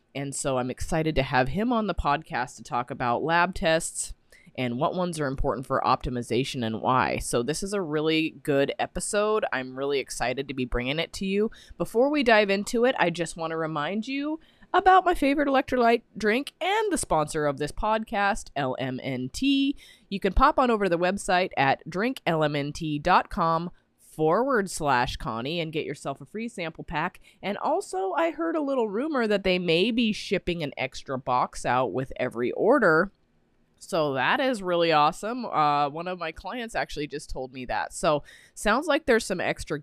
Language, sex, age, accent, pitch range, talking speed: English, female, 20-39, American, 135-205 Hz, 185 wpm